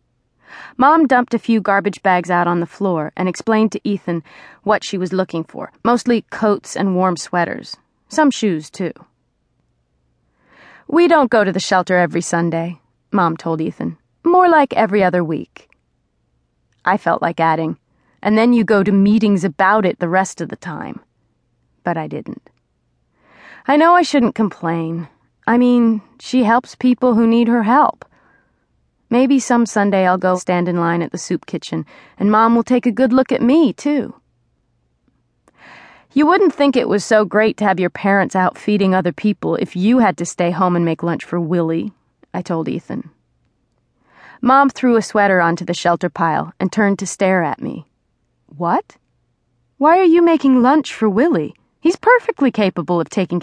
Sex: female